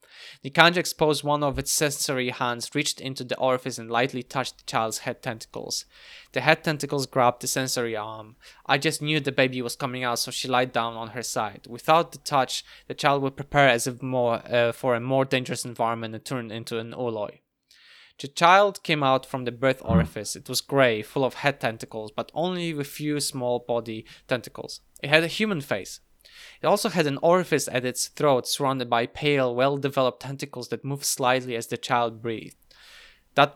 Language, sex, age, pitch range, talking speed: English, male, 20-39, 120-145 Hz, 195 wpm